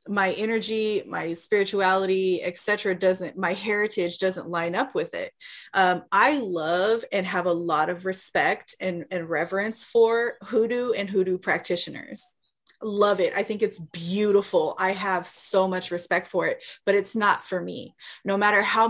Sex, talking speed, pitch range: female, 160 wpm, 180-215 Hz